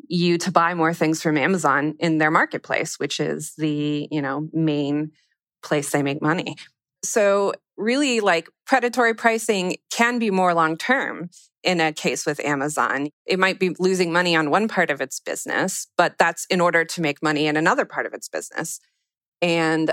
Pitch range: 150-185 Hz